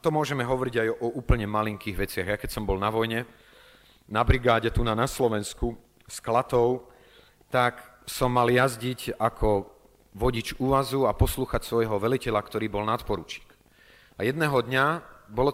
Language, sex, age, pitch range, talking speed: Slovak, male, 30-49, 100-120 Hz, 160 wpm